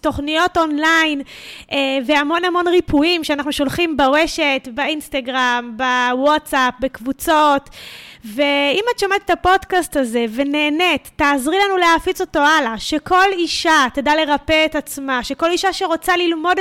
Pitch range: 280-355 Hz